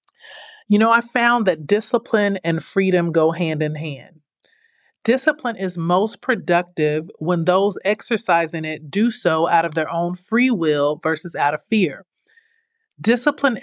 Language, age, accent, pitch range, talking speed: English, 40-59, American, 165-215 Hz, 145 wpm